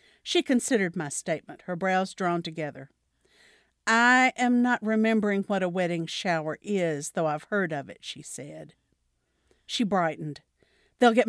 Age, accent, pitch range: 50-69, American, 165-235 Hz